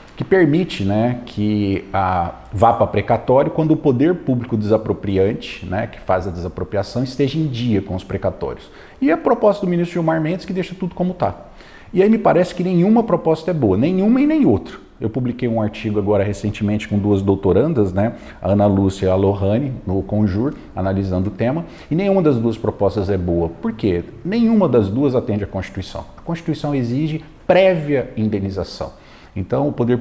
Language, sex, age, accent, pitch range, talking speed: Portuguese, male, 40-59, Brazilian, 105-170 Hz, 185 wpm